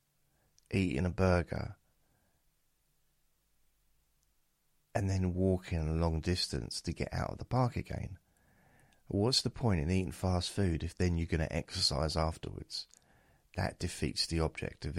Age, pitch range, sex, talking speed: 30-49, 75-90 Hz, male, 140 wpm